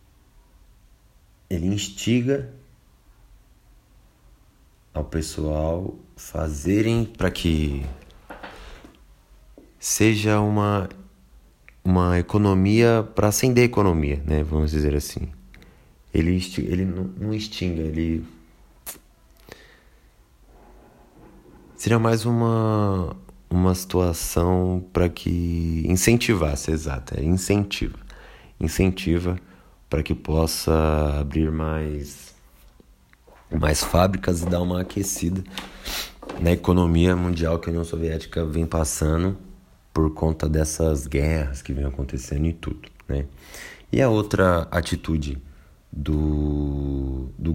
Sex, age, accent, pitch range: male, 30-49, Brazilian, 75-95 Hz